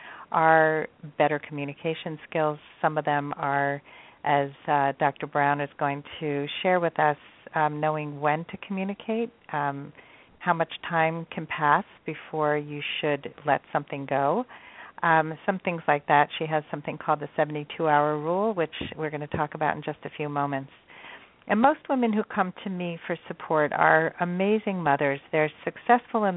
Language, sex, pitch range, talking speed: English, female, 150-185 Hz, 165 wpm